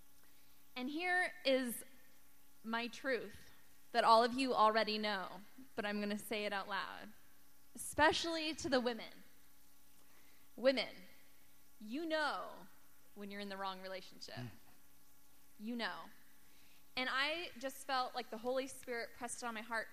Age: 10-29